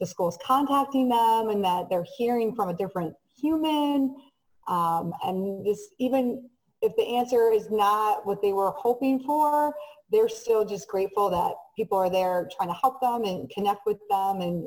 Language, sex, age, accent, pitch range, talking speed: English, female, 30-49, American, 195-285 Hz, 175 wpm